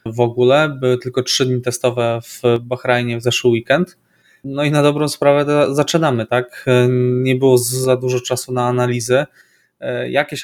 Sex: male